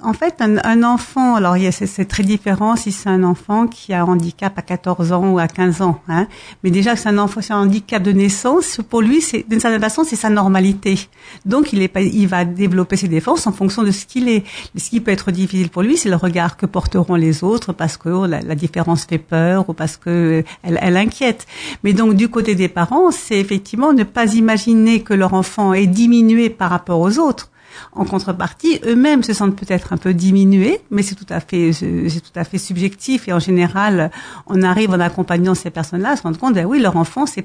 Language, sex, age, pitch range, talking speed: French, female, 60-79, 185-235 Hz, 230 wpm